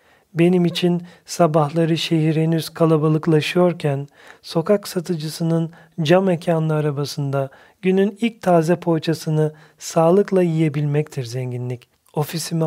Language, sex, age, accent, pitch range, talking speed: Turkish, male, 40-59, native, 145-175 Hz, 90 wpm